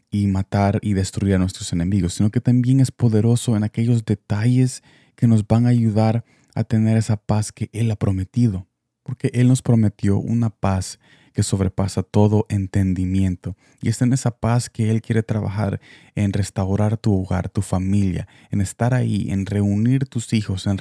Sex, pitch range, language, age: male, 100-115 Hz, Spanish, 20-39